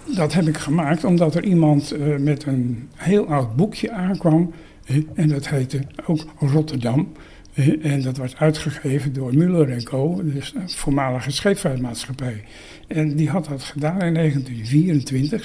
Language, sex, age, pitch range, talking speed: Dutch, male, 60-79, 140-170 Hz, 150 wpm